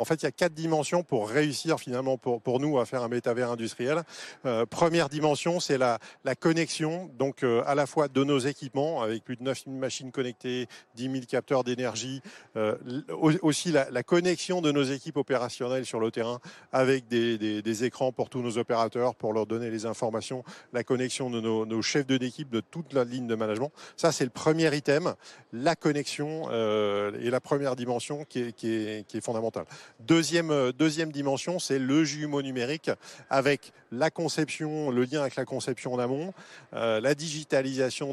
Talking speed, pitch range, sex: 190 wpm, 120-150 Hz, male